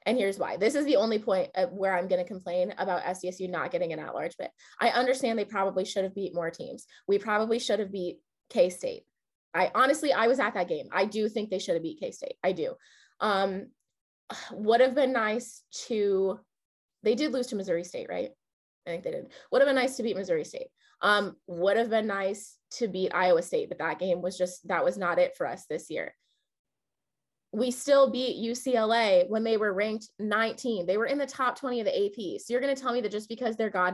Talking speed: 225 wpm